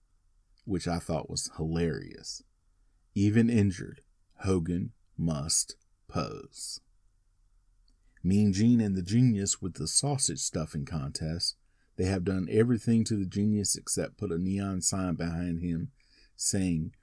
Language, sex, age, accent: English, male, 40-59, American